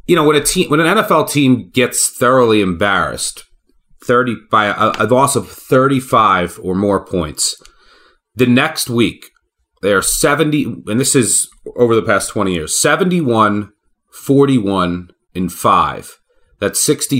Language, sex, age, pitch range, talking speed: English, male, 30-49, 110-170 Hz, 135 wpm